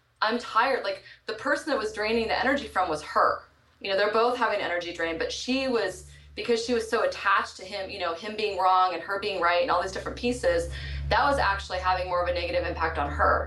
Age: 20-39